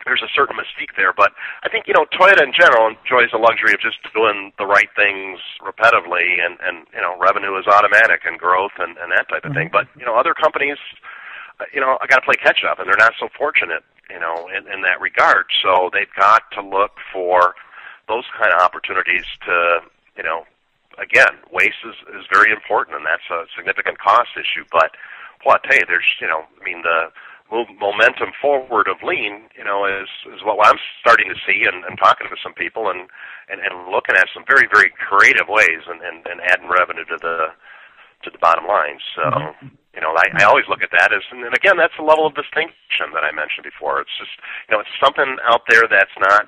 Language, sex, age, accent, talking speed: English, male, 40-59, American, 215 wpm